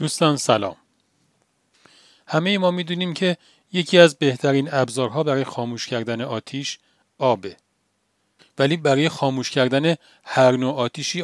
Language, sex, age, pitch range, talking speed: Persian, male, 40-59, 120-155 Hz, 115 wpm